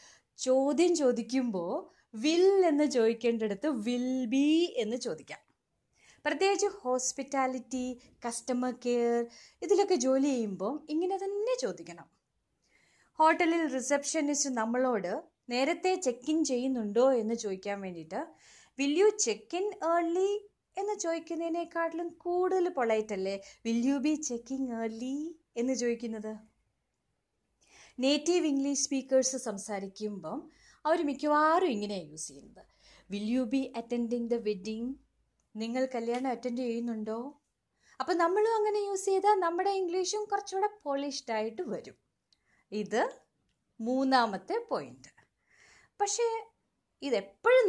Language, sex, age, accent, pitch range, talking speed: Malayalam, female, 20-39, native, 230-340 Hz, 95 wpm